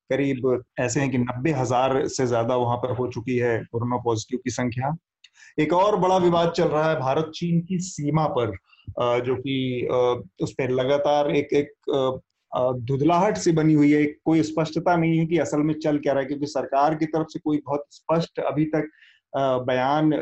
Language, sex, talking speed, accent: Hindi, male, 180 wpm, native